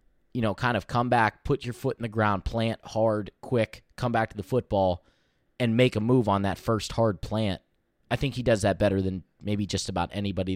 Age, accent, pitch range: 20-39, American, 100-120 Hz